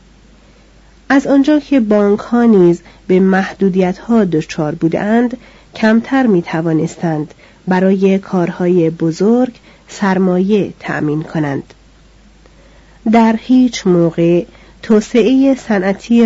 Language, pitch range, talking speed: Persian, 170-225 Hz, 90 wpm